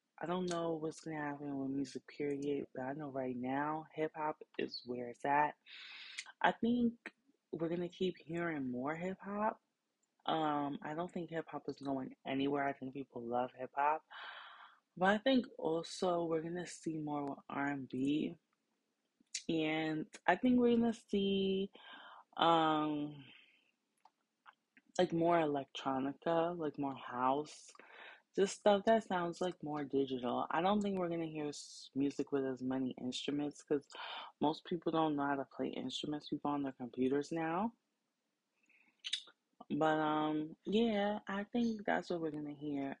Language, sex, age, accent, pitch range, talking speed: English, female, 20-39, American, 140-195 Hz, 155 wpm